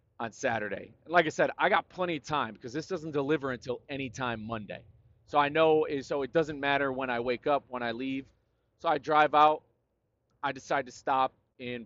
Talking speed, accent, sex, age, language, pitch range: 220 wpm, American, male, 30-49, English, 110-140 Hz